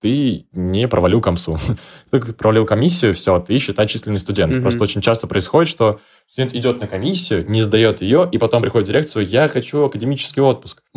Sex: male